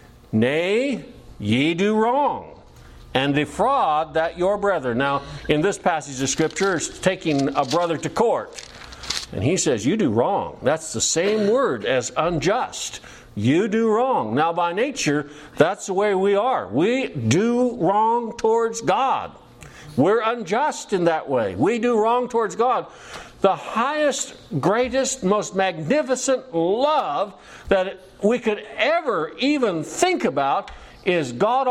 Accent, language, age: American, English, 60-79